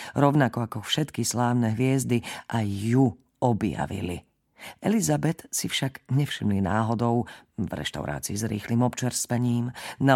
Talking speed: 110 wpm